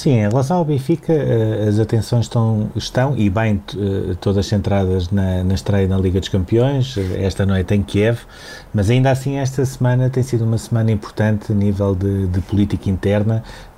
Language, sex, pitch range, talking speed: Portuguese, male, 100-110 Hz, 175 wpm